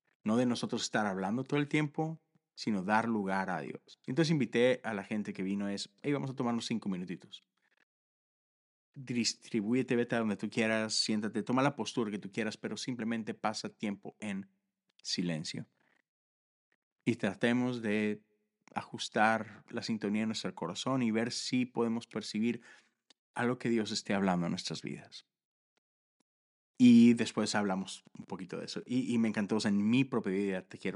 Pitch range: 105-125 Hz